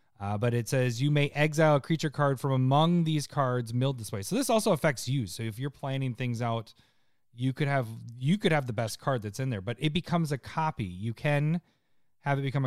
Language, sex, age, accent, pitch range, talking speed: English, male, 30-49, American, 115-150 Hz, 235 wpm